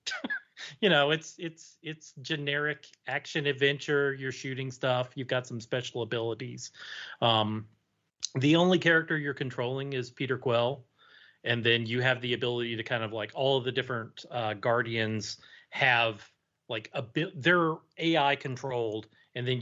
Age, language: 30-49, English